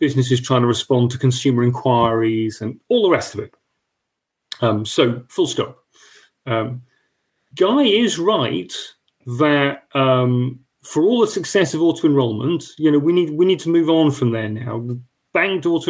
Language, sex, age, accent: English, male, 30-49, British